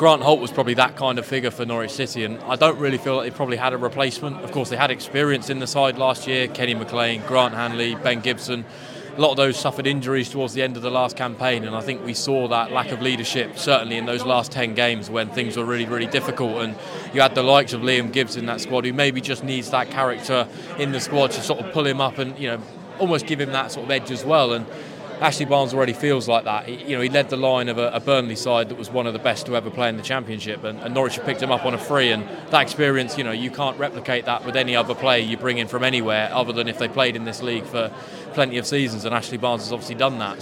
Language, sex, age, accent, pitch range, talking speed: English, male, 20-39, British, 120-135 Hz, 280 wpm